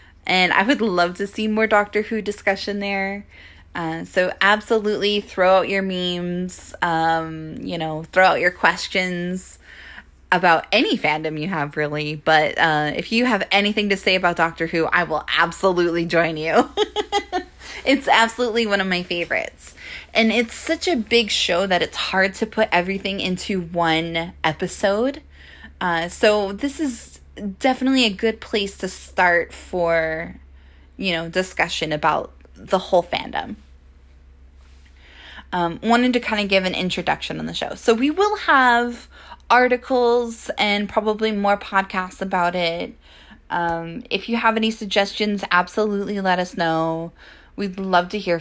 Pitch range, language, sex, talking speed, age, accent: 165-215 Hz, English, female, 150 wpm, 20-39, American